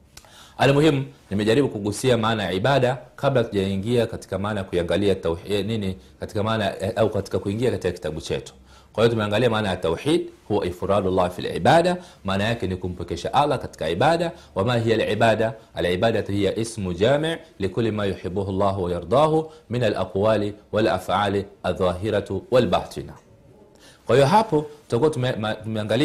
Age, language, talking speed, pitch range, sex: 40-59, Swahili, 125 wpm, 100-150 Hz, male